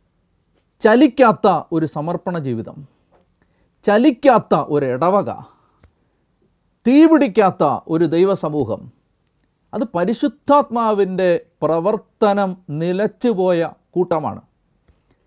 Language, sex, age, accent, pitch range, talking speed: Malayalam, male, 40-59, native, 170-235 Hz, 60 wpm